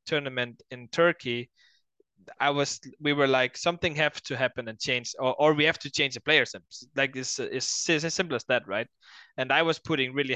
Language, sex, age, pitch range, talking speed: English, male, 20-39, 120-150 Hz, 205 wpm